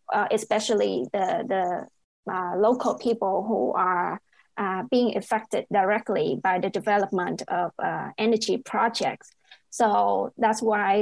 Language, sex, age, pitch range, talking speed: English, female, 20-39, 205-235 Hz, 125 wpm